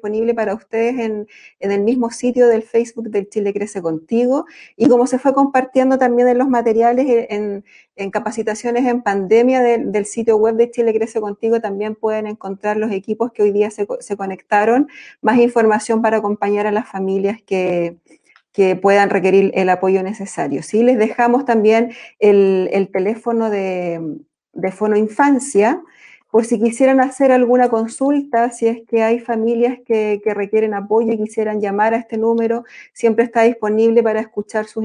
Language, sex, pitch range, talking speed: Spanish, female, 210-240 Hz, 170 wpm